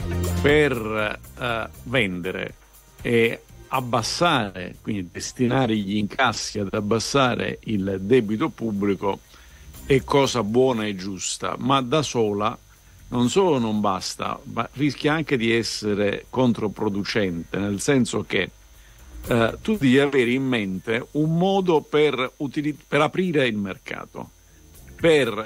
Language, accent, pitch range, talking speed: Italian, native, 100-140 Hz, 110 wpm